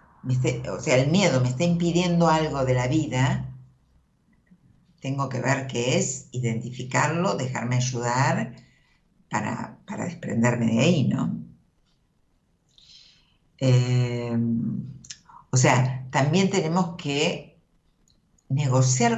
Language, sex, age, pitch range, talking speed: Spanish, female, 60-79, 125-150 Hz, 105 wpm